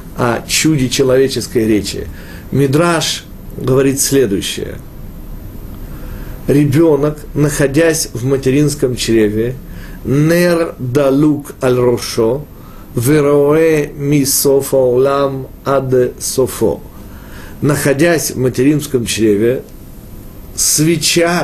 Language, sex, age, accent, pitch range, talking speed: Russian, male, 40-59, native, 125-150 Hz, 65 wpm